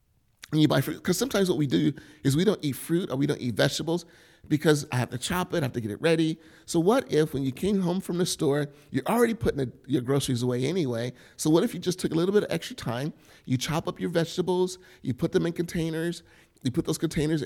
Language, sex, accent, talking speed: English, male, American, 250 wpm